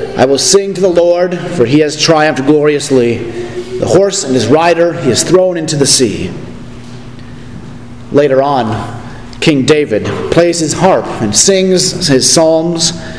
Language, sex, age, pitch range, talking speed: English, male, 40-59, 125-180 Hz, 150 wpm